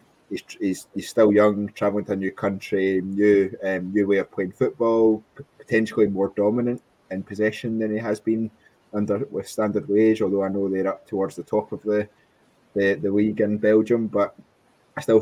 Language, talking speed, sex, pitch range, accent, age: English, 195 wpm, male, 95-110 Hz, British, 20-39